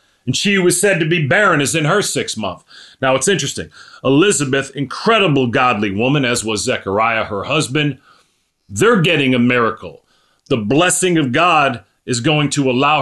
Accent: American